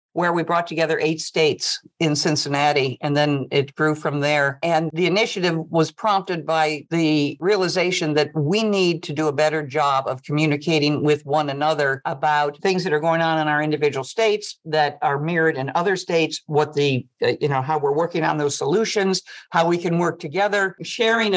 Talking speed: 190 wpm